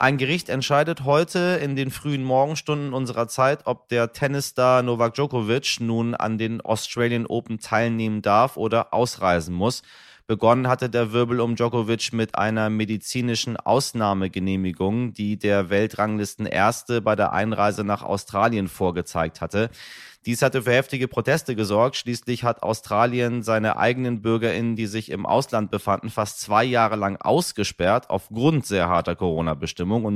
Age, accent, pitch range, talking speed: 30-49, German, 105-130 Hz, 145 wpm